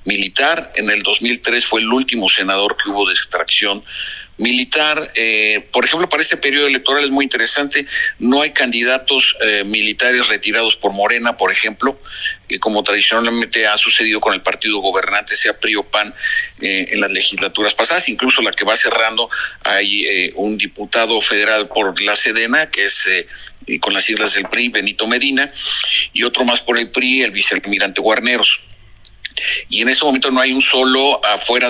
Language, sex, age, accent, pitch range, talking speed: Spanish, male, 50-69, Mexican, 110-135 Hz, 175 wpm